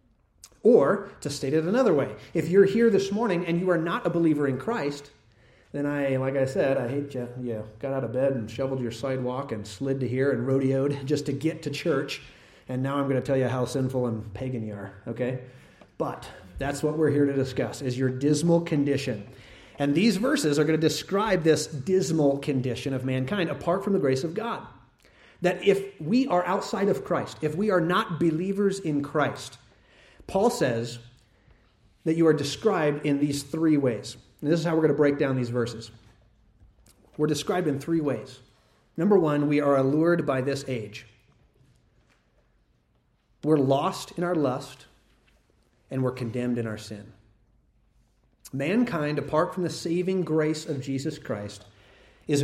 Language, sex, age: English, male, 30-49